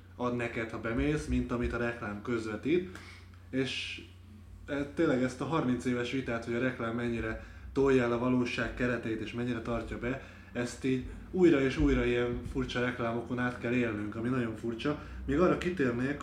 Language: Hungarian